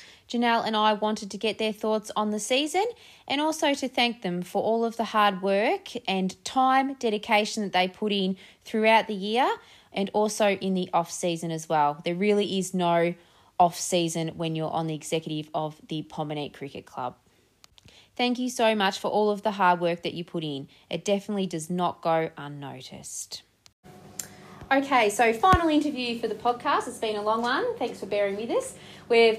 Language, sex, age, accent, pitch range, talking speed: English, female, 20-39, Australian, 180-240 Hz, 190 wpm